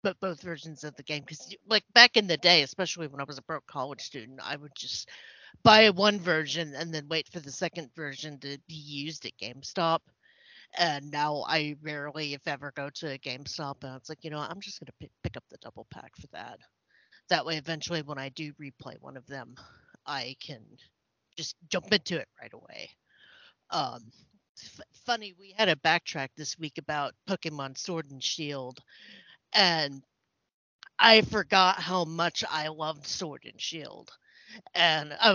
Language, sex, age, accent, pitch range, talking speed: English, female, 40-59, American, 145-185 Hz, 185 wpm